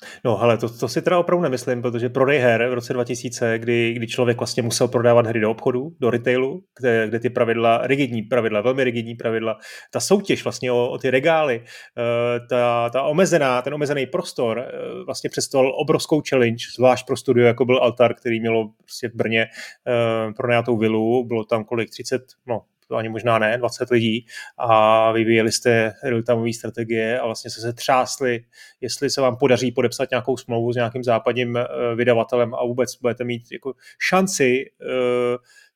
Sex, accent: male, native